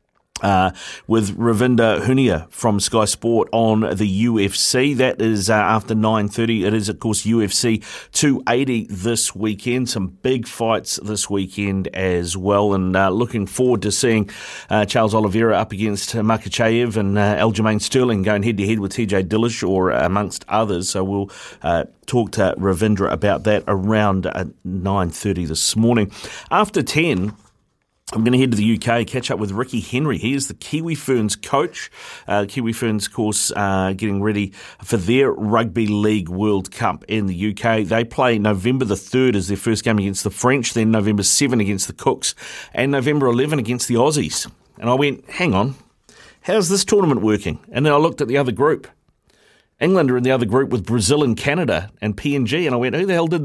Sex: male